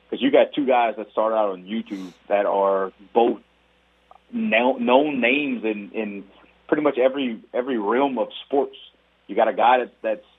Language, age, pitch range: English, 30-49, 100-125 Hz